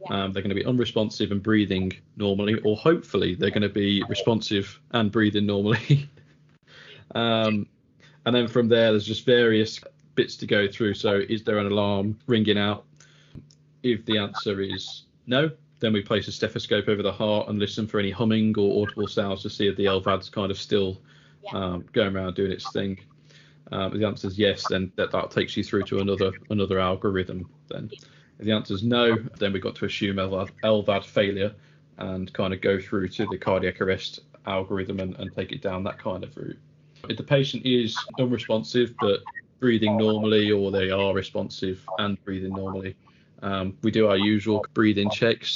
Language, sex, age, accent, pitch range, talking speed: English, male, 20-39, British, 95-110 Hz, 190 wpm